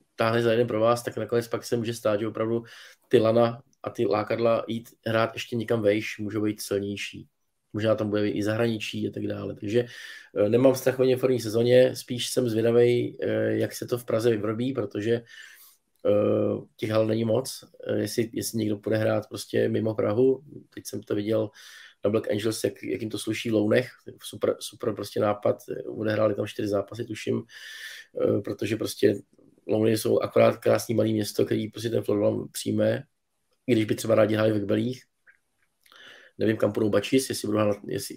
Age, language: 20-39, Czech